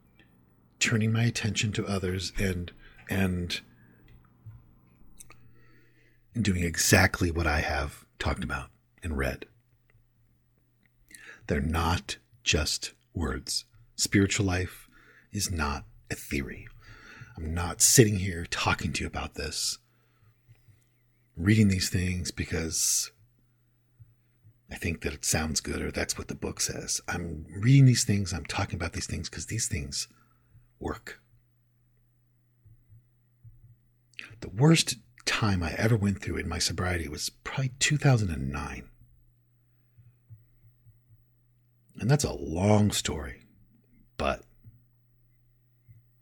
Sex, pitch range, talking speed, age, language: male, 90-120 Hz, 110 wpm, 40-59, English